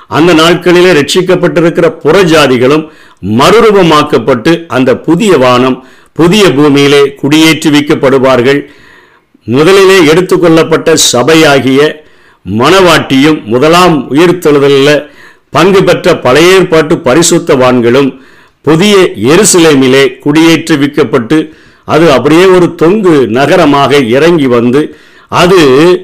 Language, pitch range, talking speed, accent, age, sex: Tamil, 135-170 Hz, 80 wpm, native, 50-69, male